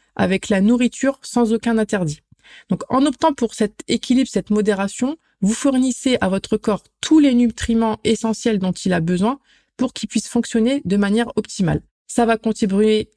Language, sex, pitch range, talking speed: French, female, 200-240 Hz, 170 wpm